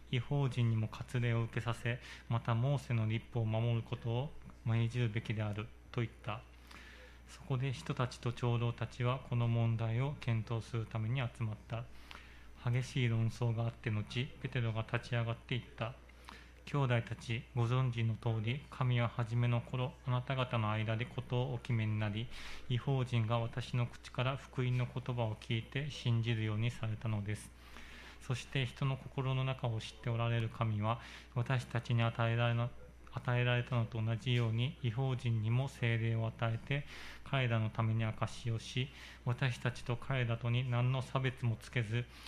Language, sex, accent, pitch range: Japanese, male, native, 115-125 Hz